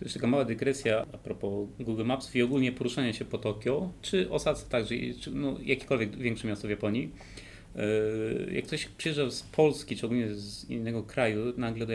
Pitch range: 110-135 Hz